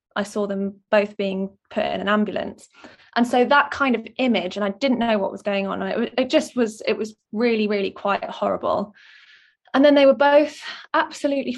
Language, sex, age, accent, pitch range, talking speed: English, female, 10-29, British, 210-250 Hz, 195 wpm